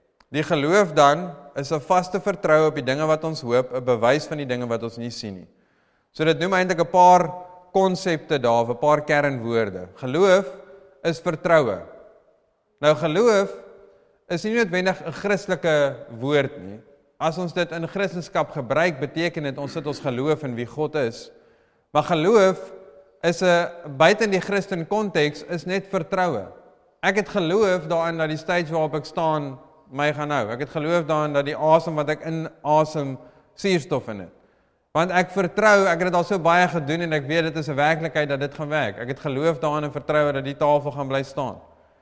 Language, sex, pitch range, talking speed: English, male, 150-185 Hz, 190 wpm